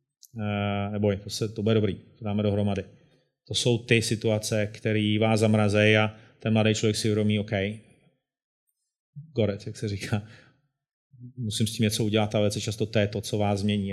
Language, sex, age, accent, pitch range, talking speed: Czech, male, 30-49, native, 105-115 Hz, 180 wpm